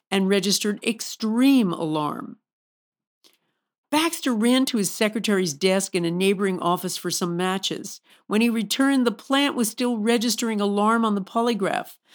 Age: 50-69